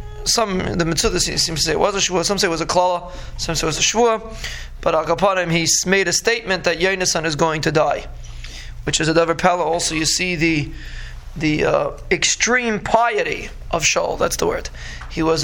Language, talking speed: English, 215 wpm